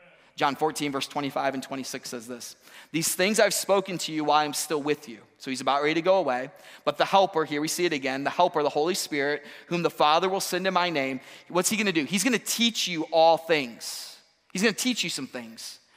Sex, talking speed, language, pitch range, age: male, 235 wpm, English, 135-170 Hz, 30-49